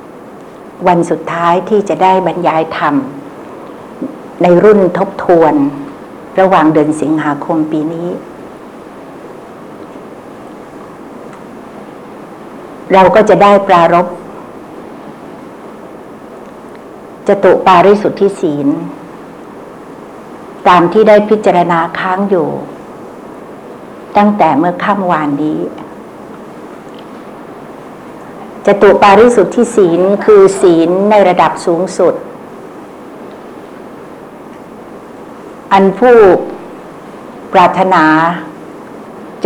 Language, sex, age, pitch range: Thai, female, 60-79, 165-200 Hz